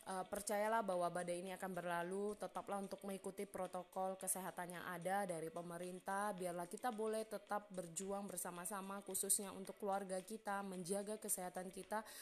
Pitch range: 180-205 Hz